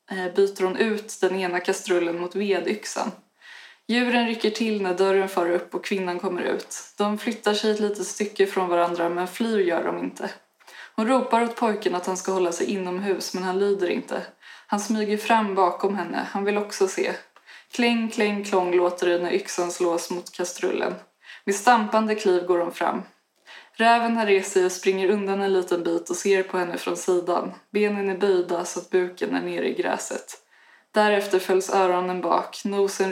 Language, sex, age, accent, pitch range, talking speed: Swedish, female, 20-39, native, 180-210 Hz, 185 wpm